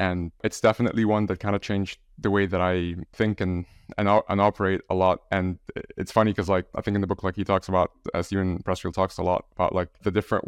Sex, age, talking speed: male, 20-39, 245 wpm